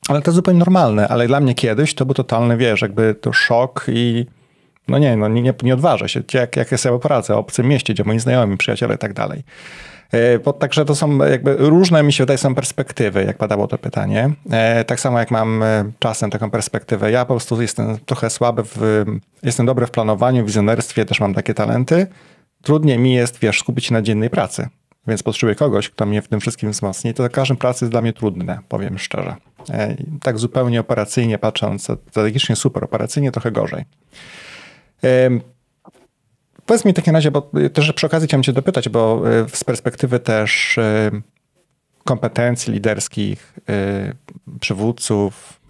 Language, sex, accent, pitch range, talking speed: Polish, male, native, 110-135 Hz, 180 wpm